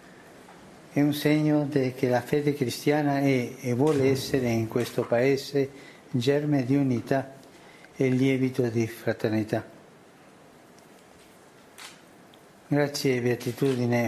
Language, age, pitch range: Slovak, 60-79, 125-150 Hz